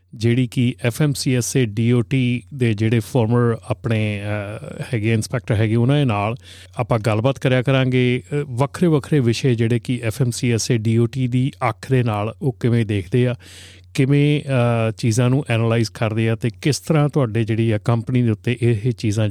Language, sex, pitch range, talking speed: Punjabi, male, 110-135 Hz, 150 wpm